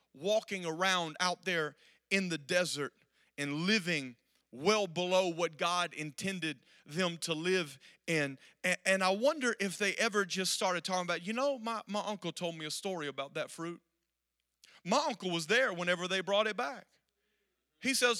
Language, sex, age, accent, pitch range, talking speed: English, male, 40-59, American, 190-275 Hz, 170 wpm